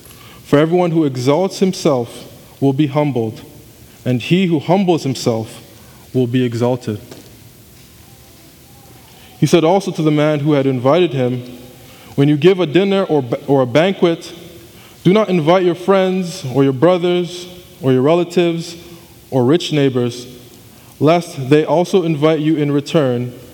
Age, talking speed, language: 20-39, 145 wpm, English